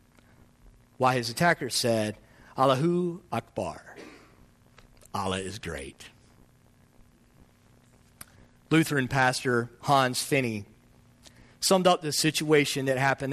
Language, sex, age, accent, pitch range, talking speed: English, male, 40-59, American, 120-180 Hz, 85 wpm